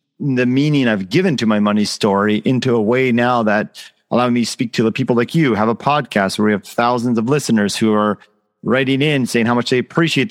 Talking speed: 235 wpm